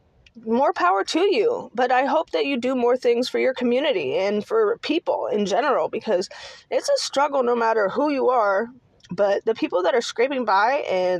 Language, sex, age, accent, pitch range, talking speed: English, female, 20-39, American, 190-275 Hz, 200 wpm